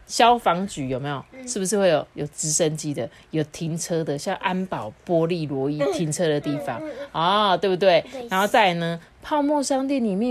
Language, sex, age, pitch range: Chinese, female, 30-49, 160-245 Hz